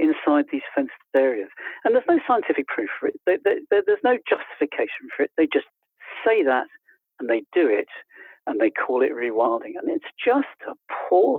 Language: English